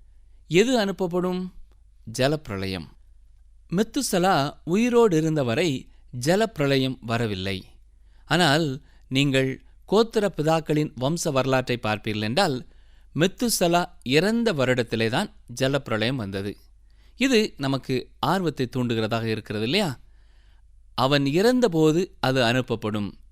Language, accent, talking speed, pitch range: Tamil, native, 75 wpm, 110-175 Hz